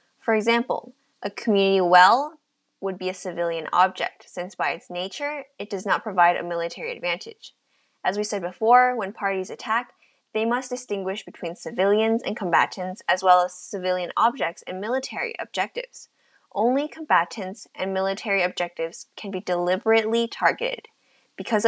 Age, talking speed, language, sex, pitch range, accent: 10-29, 145 wpm, English, female, 185-245 Hz, American